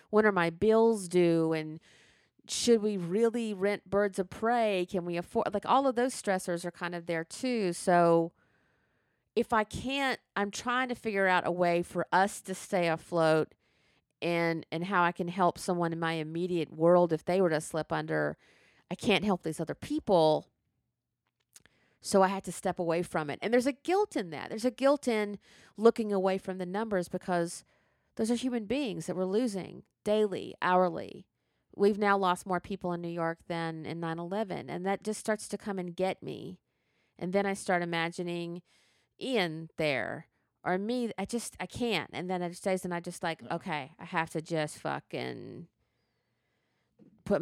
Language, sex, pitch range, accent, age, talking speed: English, female, 170-210 Hz, American, 40-59, 185 wpm